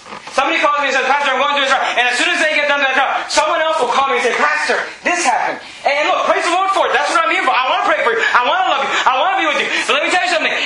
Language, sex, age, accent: English, male, 30-49, American